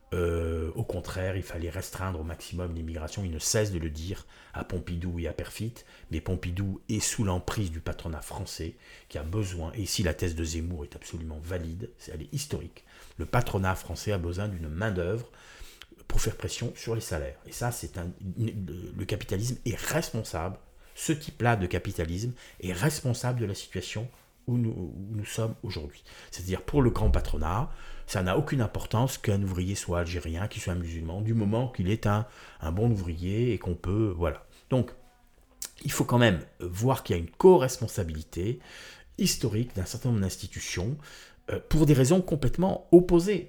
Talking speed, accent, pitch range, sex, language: 175 wpm, French, 90-120 Hz, male, French